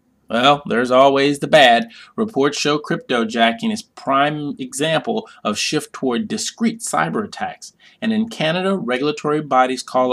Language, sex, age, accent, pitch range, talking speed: English, male, 30-49, American, 140-225 Hz, 140 wpm